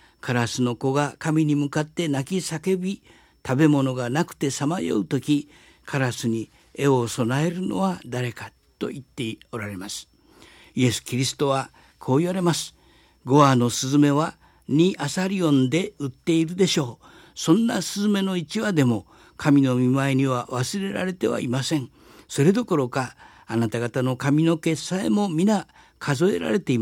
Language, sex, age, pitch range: Japanese, male, 60-79, 115-160 Hz